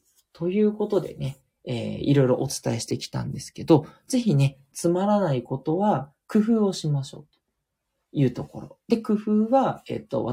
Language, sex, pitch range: Japanese, male, 130-200 Hz